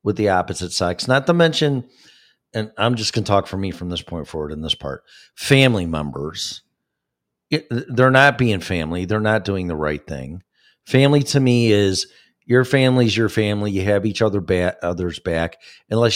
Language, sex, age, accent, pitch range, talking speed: English, male, 40-59, American, 90-120 Hz, 180 wpm